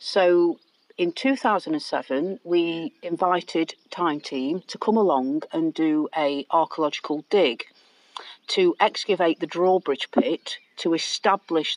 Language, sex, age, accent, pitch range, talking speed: English, female, 40-59, British, 160-215 Hz, 110 wpm